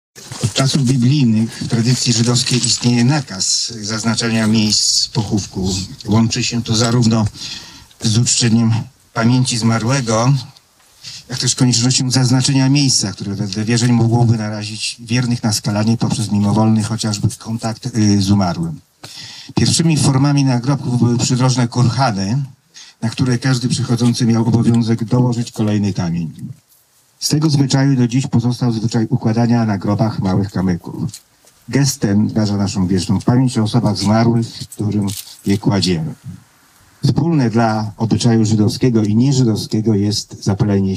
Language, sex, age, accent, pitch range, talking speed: Polish, male, 50-69, native, 105-125 Hz, 125 wpm